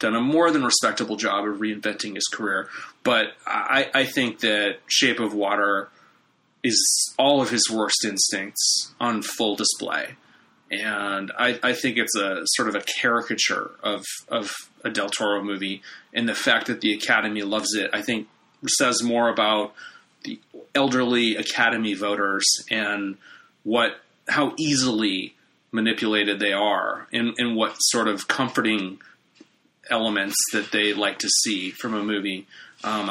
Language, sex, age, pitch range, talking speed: English, male, 30-49, 105-125 Hz, 150 wpm